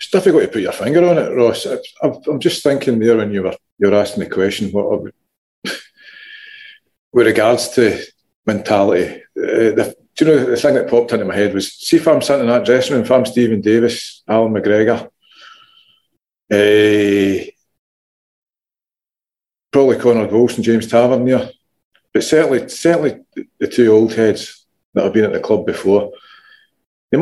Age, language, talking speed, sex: 40-59, English, 175 wpm, male